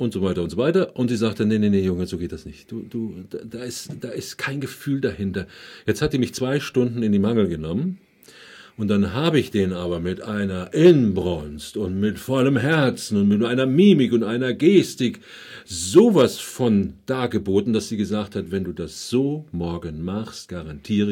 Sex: male